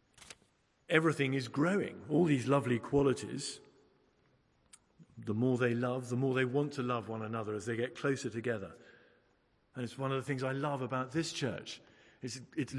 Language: English